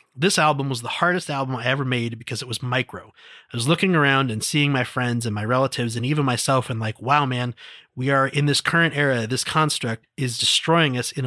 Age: 30-49